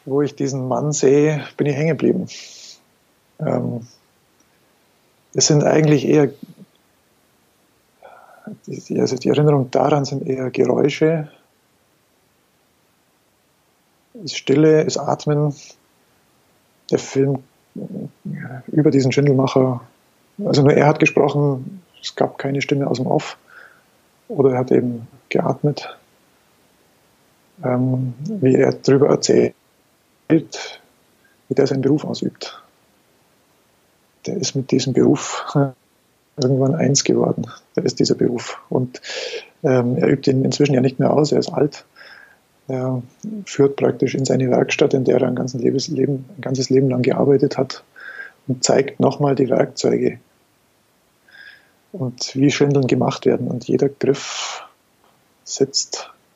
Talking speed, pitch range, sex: 120 wpm, 130-150 Hz, male